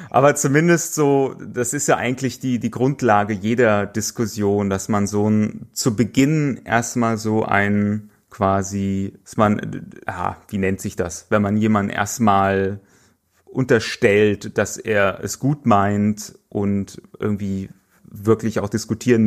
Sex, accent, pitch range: male, German, 95-110 Hz